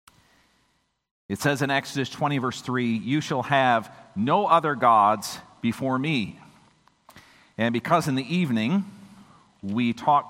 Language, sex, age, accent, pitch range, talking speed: English, male, 50-69, American, 120-155 Hz, 130 wpm